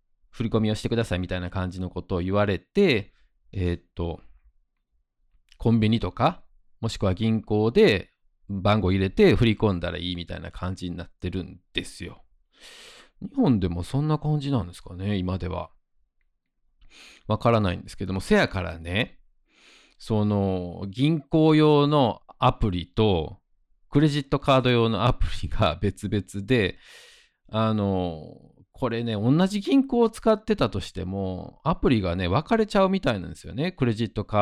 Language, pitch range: Japanese, 90-135 Hz